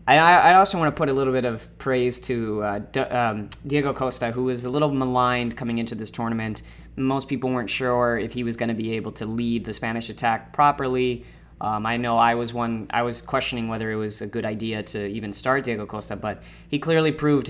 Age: 20-39